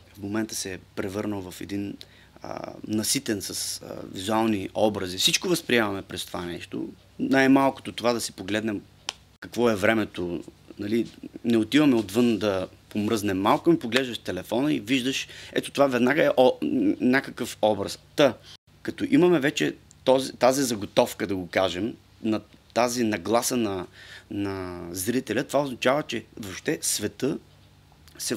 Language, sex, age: Bulgarian, male, 30-49